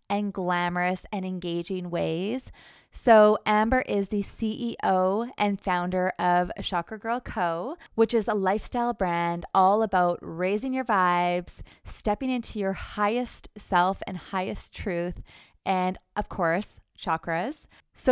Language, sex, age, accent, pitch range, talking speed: English, female, 20-39, American, 175-220 Hz, 130 wpm